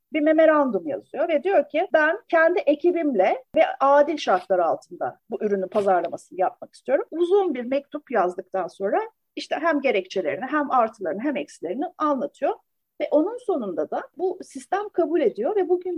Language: Turkish